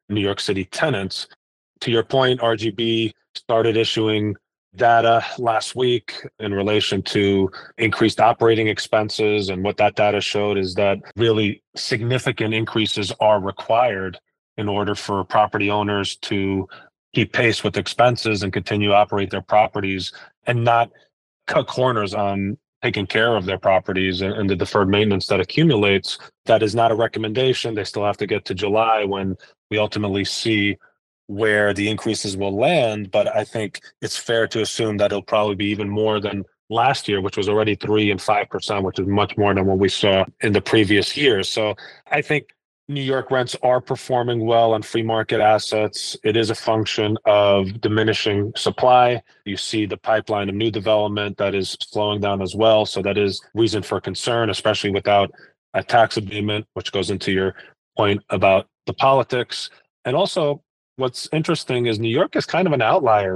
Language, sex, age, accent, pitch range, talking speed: English, male, 30-49, American, 100-115 Hz, 170 wpm